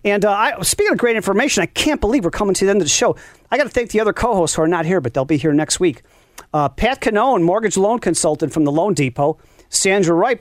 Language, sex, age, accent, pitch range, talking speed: English, male, 40-59, American, 155-220 Hz, 270 wpm